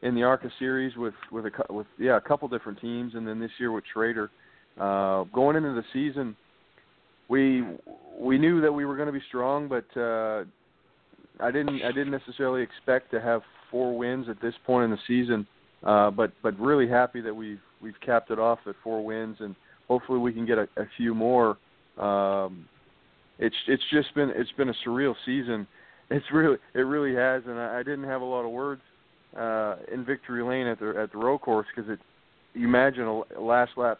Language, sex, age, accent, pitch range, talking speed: English, male, 40-59, American, 110-130 Hz, 205 wpm